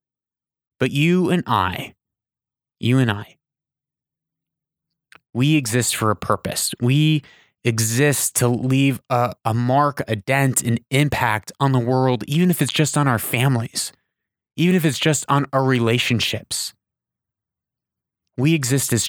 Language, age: English, 30-49